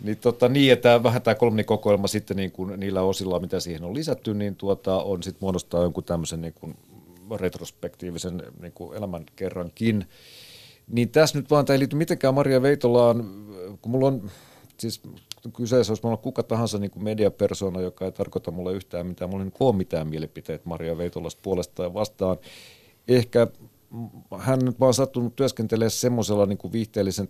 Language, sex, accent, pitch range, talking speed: Finnish, male, native, 90-115 Hz, 160 wpm